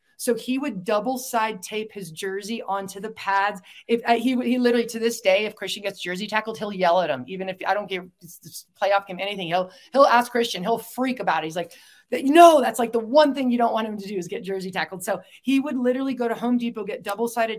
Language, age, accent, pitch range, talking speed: English, 30-49, American, 200-245 Hz, 250 wpm